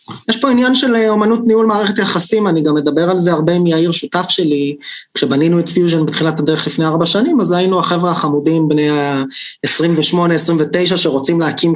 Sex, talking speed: male, 175 wpm